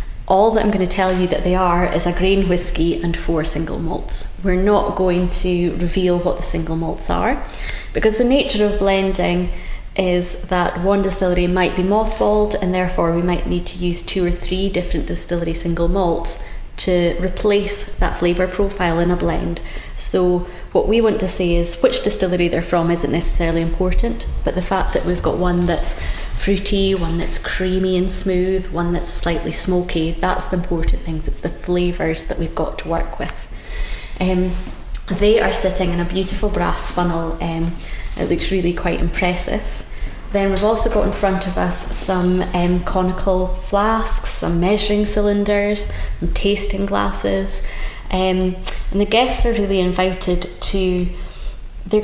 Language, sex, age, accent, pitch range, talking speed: English, female, 20-39, British, 170-195 Hz, 170 wpm